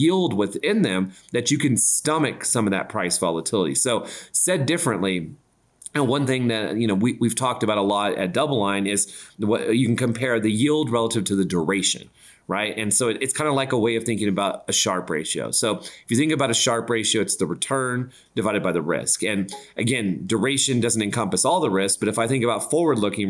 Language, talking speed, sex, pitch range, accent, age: English, 220 wpm, male, 100-130 Hz, American, 30-49